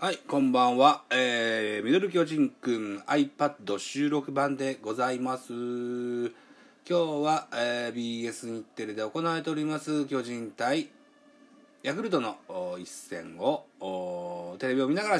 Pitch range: 120-195 Hz